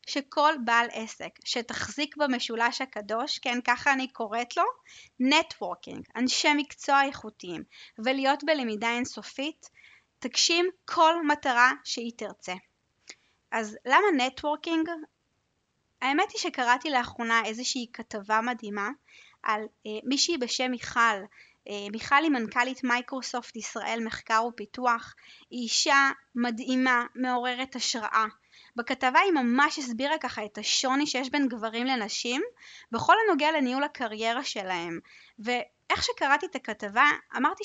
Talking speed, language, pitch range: 115 wpm, Hebrew, 230-295 Hz